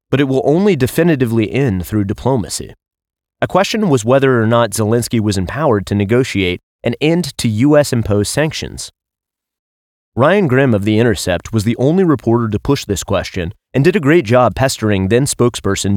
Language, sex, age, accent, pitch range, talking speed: English, male, 30-49, American, 105-135 Hz, 165 wpm